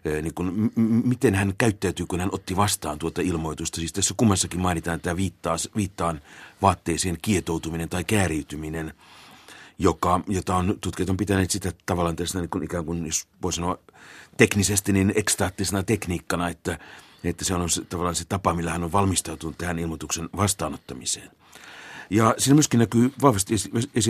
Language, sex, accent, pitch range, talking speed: Finnish, male, native, 85-105 Hz, 150 wpm